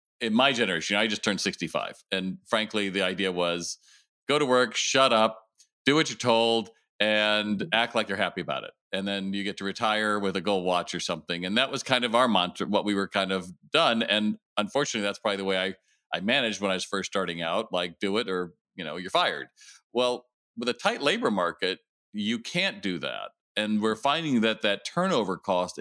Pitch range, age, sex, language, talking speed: 100-130 Hz, 40-59, male, English, 215 wpm